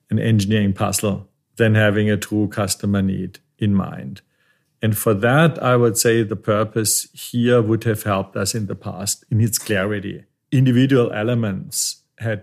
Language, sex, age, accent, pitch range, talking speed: German, male, 50-69, German, 105-120 Hz, 160 wpm